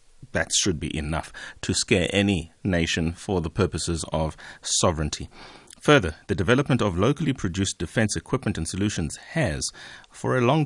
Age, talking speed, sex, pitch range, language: 30-49, 150 wpm, male, 85-105 Hz, English